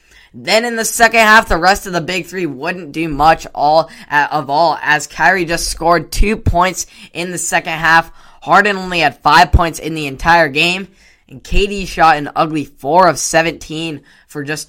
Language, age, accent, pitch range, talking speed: English, 10-29, American, 155-185 Hz, 190 wpm